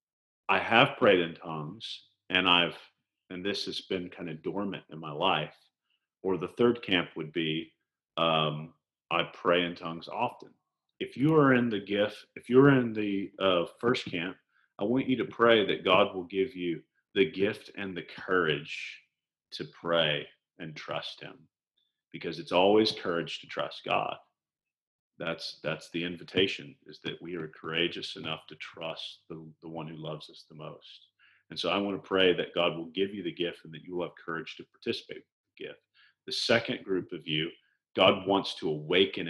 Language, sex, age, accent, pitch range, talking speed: English, male, 40-59, American, 85-115 Hz, 185 wpm